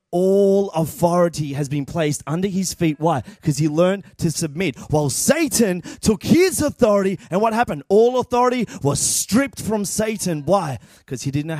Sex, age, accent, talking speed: male, 30-49, Australian, 175 wpm